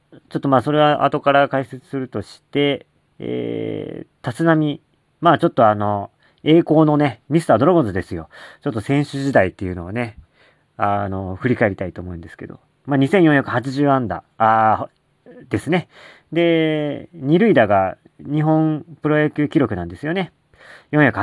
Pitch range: 105-150 Hz